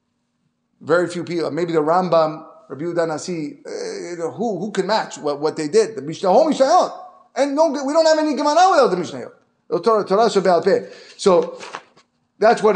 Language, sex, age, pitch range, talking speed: English, male, 30-49, 160-230 Hz, 170 wpm